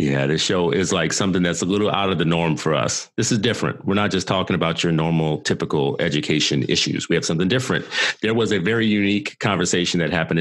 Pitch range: 70-90 Hz